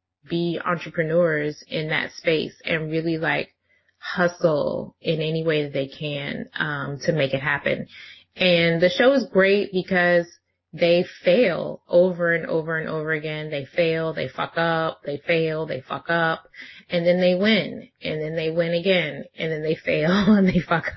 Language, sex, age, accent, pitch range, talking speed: English, female, 20-39, American, 155-180 Hz, 170 wpm